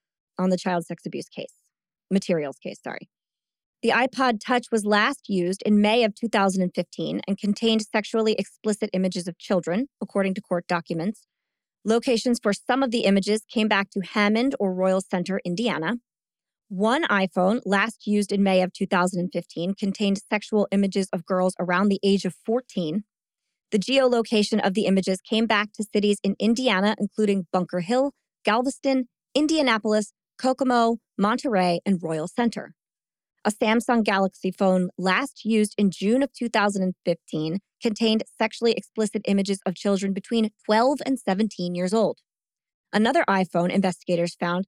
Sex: female